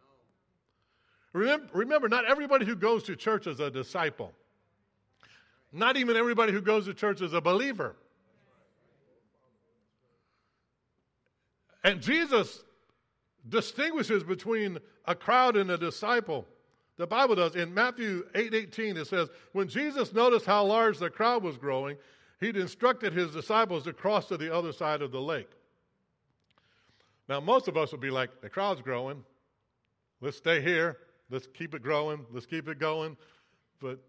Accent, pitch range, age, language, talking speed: American, 135-220 Hz, 60-79, English, 145 wpm